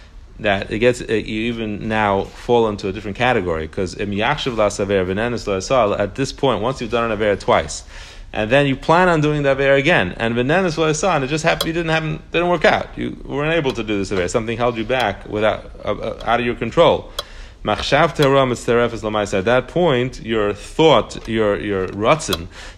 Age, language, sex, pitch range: 30-49, English, male, 100-125 Hz